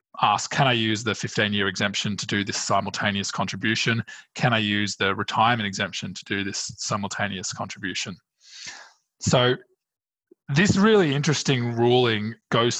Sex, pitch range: male, 110-145 Hz